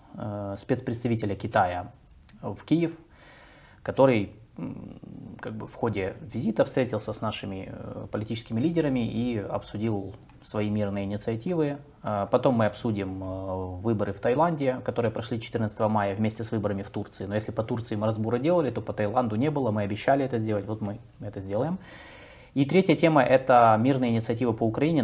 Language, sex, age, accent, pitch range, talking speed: Russian, male, 20-39, native, 100-125 Hz, 145 wpm